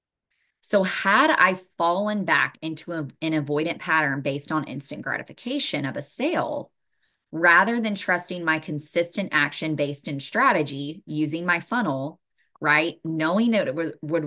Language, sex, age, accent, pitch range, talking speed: English, female, 20-39, American, 145-170 Hz, 140 wpm